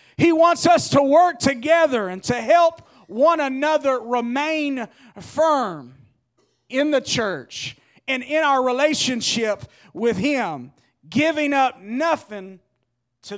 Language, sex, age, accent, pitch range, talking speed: English, male, 40-59, American, 215-300 Hz, 115 wpm